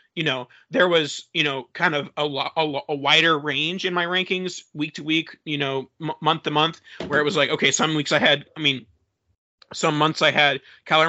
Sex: male